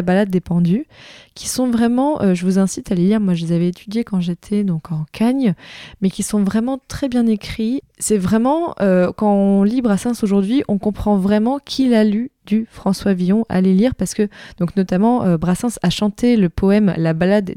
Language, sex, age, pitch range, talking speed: French, female, 20-39, 175-230 Hz, 210 wpm